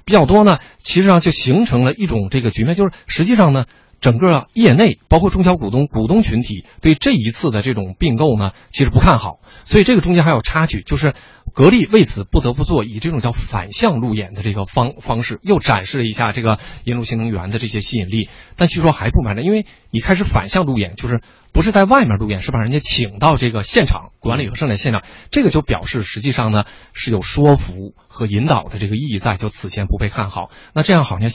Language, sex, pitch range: Chinese, male, 105-145 Hz